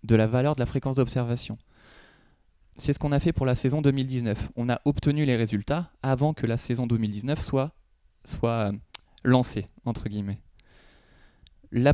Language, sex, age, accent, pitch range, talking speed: French, male, 20-39, French, 110-135 Hz, 150 wpm